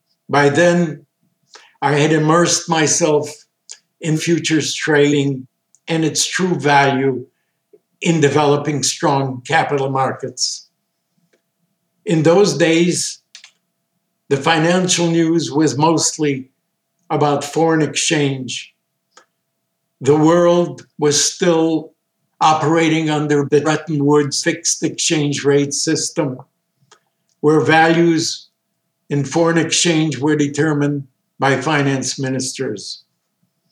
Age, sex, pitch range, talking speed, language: 60-79, male, 140-165 Hz, 95 wpm, English